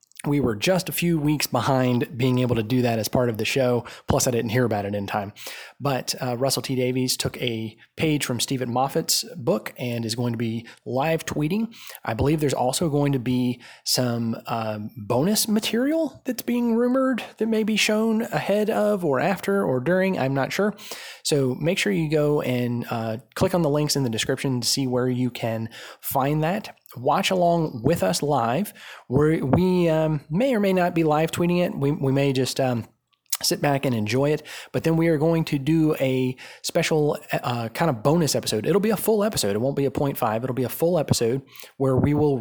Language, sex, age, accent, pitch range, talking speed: English, male, 20-39, American, 125-165 Hz, 210 wpm